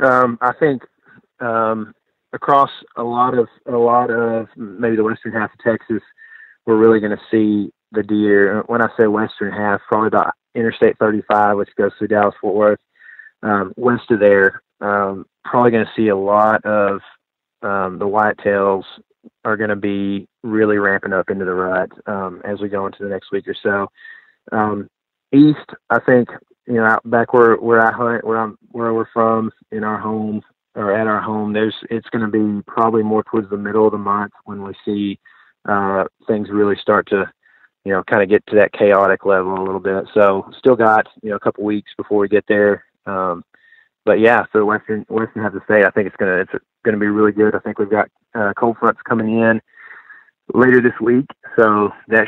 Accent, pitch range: American, 100-115 Hz